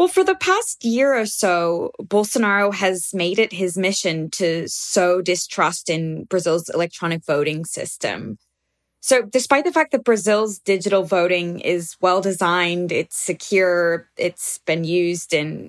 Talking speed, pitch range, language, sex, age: 140 wpm, 170-210 Hz, English, female, 20-39